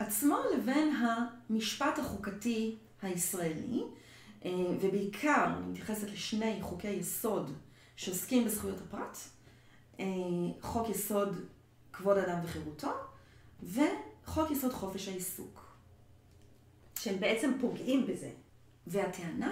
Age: 40-59